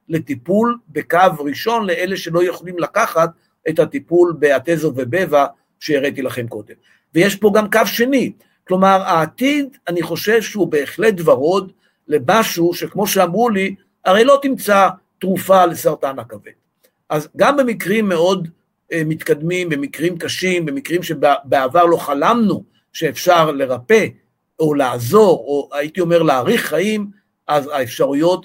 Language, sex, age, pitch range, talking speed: Hebrew, male, 50-69, 155-195 Hz, 120 wpm